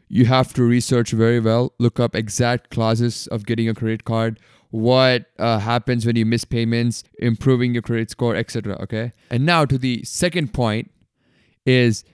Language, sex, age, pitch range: English, male, 20-39, 110-130 Hz